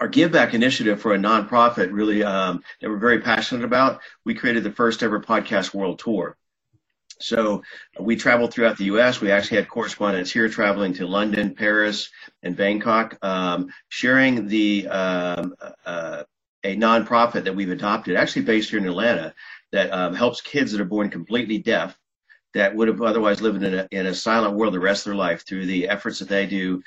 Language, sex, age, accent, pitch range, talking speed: English, male, 50-69, American, 95-110 Hz, 190 wpm